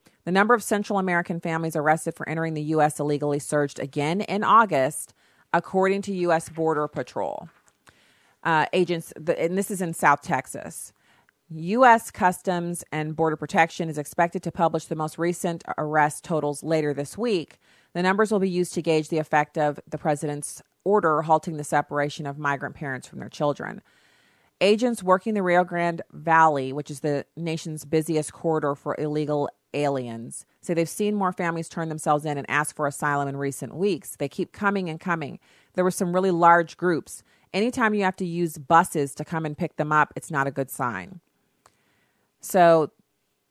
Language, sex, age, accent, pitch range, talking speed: English, female, 40-59, American, 150-175 Hz, 175 wpm